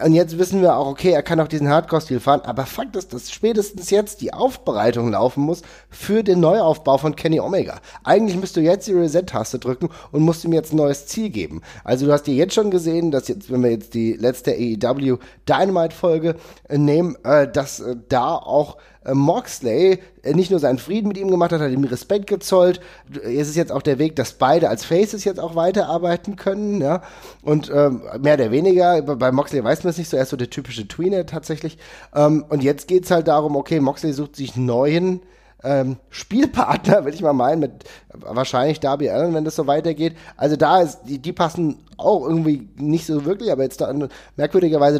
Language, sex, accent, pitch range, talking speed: German, male, German, 135-170 Hz, 205 wpm